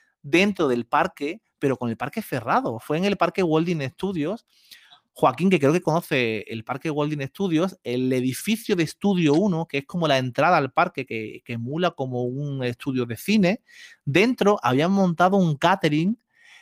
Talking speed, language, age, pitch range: 175 wpm, Spanish, 30-49, 130-175 Hz